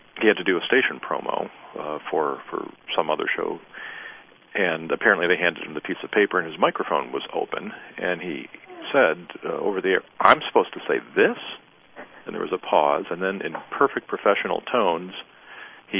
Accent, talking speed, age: American, 190 wpm, 40-59